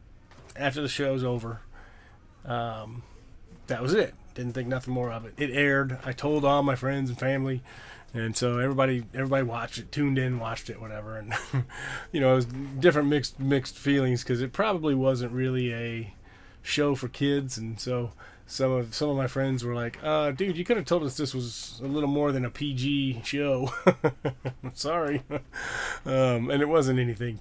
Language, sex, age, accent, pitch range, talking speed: English, male, 20-39, American, 115-140 Hz, 185 wpm